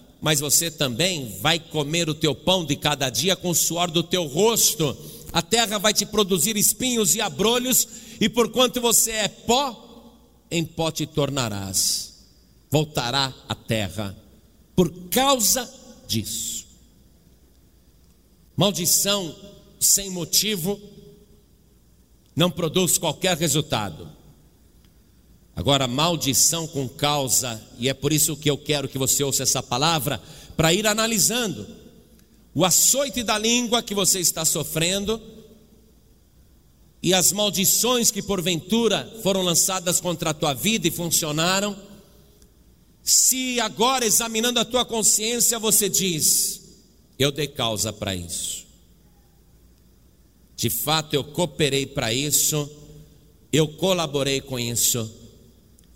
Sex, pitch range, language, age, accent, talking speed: male, 140-205 Hz, Portuguese, 50-69, Brazilian, 120 wpm